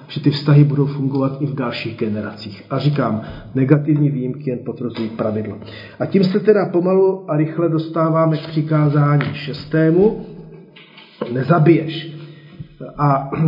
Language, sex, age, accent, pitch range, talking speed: Czech, male, 40-59, native, 140-170 Hz, 130 wpm